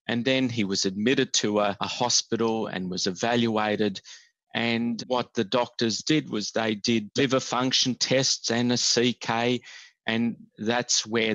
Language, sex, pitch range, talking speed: English, male, 105-125 Hz, 155 wpm